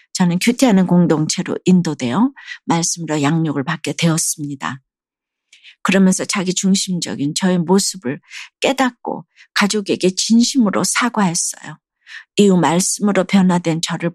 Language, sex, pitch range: Korean, female, 175-215 Hz